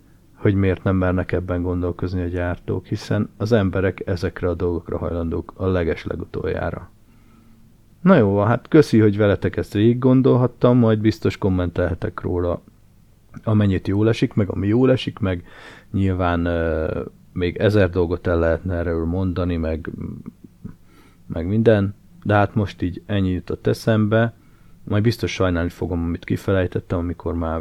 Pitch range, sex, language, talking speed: 85-110 Hz, male, Hungarian, 145 wpm